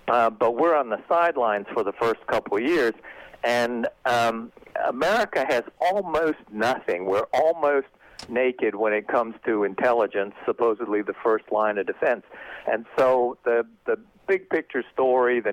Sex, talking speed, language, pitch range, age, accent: male, 155 wpm, English, 105-125 Hz, 60-79, American